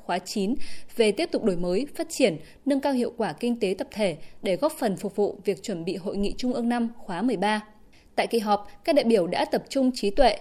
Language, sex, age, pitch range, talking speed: Vietnamese, female, 20-39, 200-255 Hz, 250 wpm